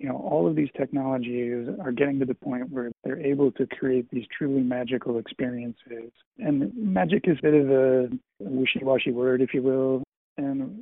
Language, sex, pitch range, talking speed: English, male, 120-140 Hz, 185 wpm